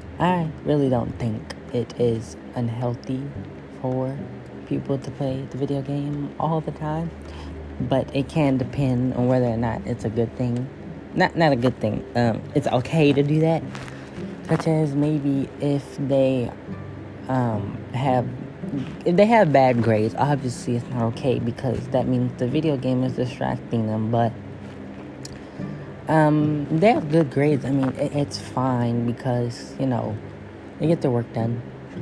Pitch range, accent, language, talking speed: 105-135 Hz, American, English, 155 wpm